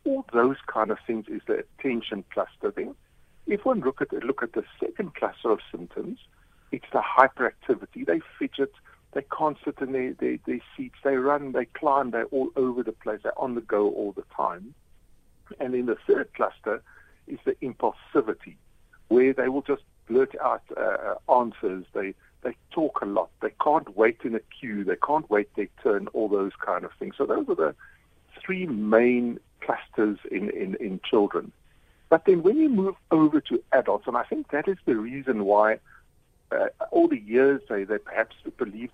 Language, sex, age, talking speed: English, male, 60-79, 190 wpm